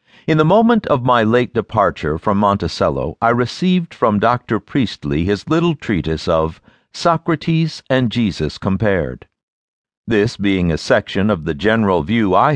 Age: 60-79